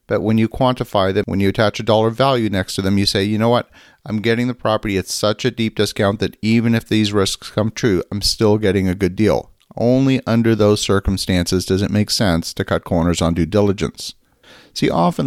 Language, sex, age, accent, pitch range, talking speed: English, male, 50-69, American, 95-115 Hz, 225 wpm